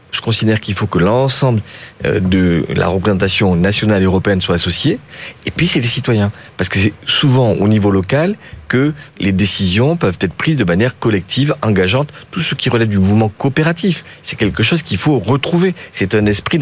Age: 40-59